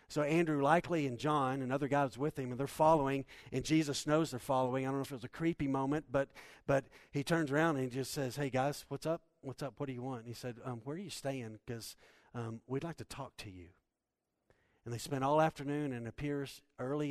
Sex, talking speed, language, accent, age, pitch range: male, 240 wpm, English, American, 50-69, 115-145 Hz